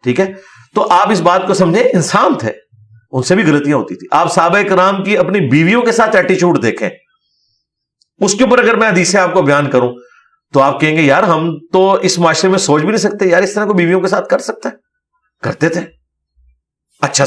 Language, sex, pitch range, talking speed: Urdu, male, 130-185 Hz, 185 wpm